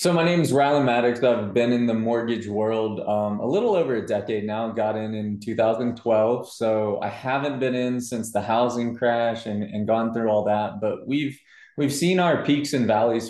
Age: 20-39